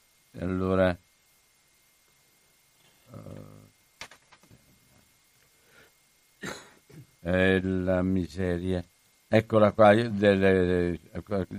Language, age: Italian, 60-79